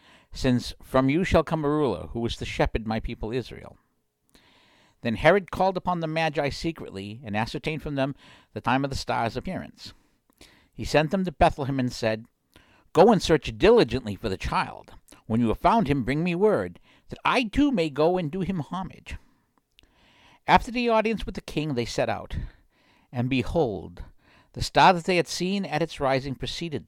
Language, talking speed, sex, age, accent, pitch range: English, 185 wpm, male, 60-79, American, 110-170 Hz